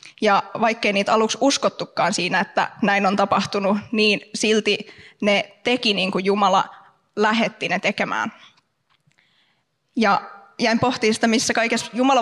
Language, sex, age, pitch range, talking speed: Finnish, female, 20-39, 200-235 Hz, 135 wpm